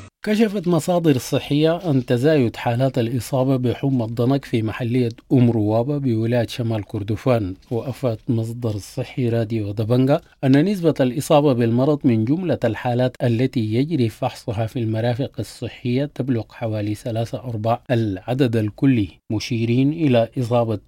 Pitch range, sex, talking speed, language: 115-135 Hz, male, 120 wpm, English